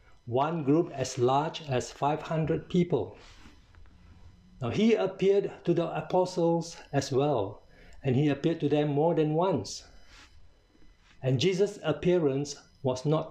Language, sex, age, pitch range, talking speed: English, male, 60-79, 125-170 Hz, 125 wpm